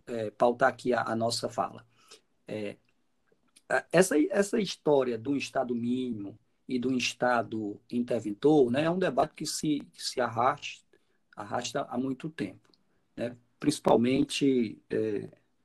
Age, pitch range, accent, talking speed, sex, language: 40-59, 115-140 Hz, Brazilian, 125 wpm, male, Portuguese